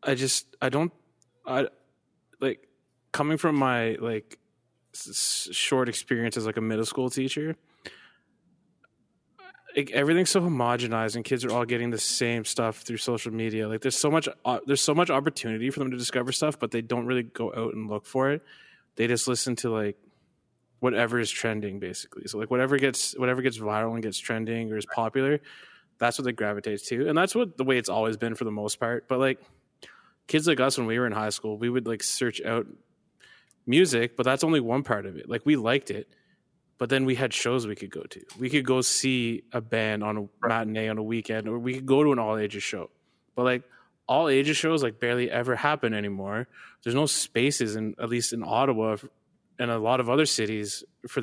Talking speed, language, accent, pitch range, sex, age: 205 wpm, English, American, 110-135 Hz, male, 20-39